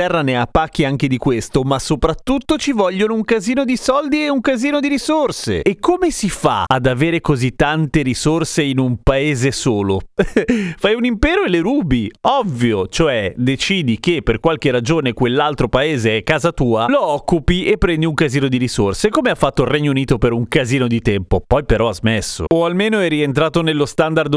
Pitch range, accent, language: 130-185 Hz, native, Italian